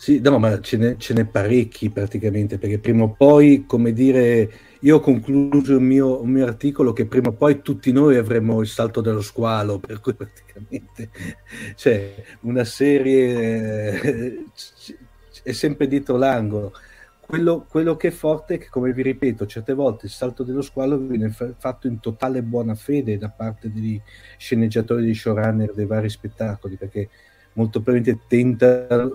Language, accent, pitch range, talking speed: Italian, native, 105-130 Hz, 170 wpm